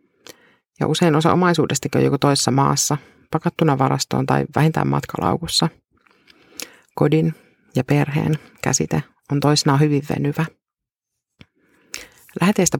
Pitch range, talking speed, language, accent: 145-170 Hz, 105 wpm, Finnish, native